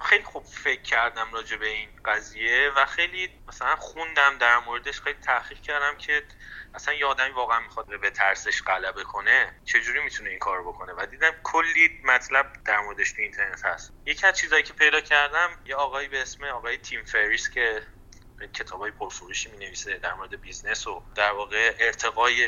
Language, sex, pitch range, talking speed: Persian, male, 115-180 Hz, 170 wpm